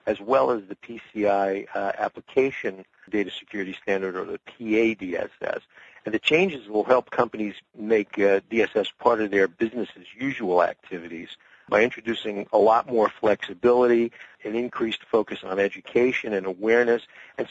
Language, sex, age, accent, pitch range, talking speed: English, male, 50-69, American, 100-115 Hz, 145 wpm